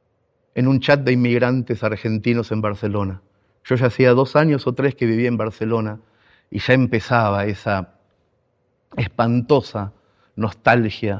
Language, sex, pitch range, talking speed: Spanish, male, 110-130 Hz, 135 wpm